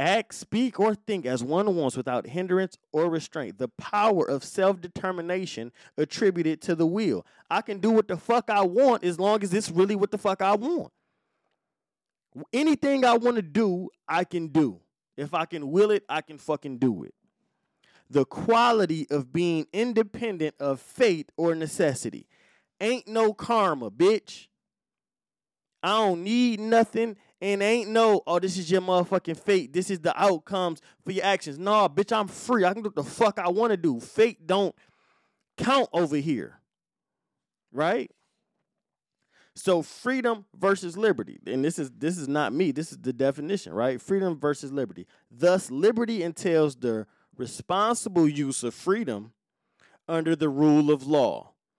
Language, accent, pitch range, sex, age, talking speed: English, American, 155-215 Hz, male, 20-39, 160 wpm